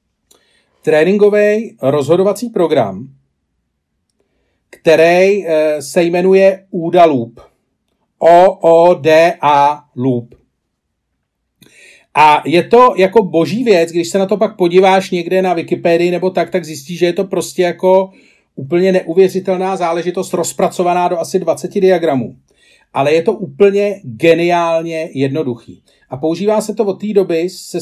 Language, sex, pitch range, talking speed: Czech, male, 155-190 Hz, 120 wpm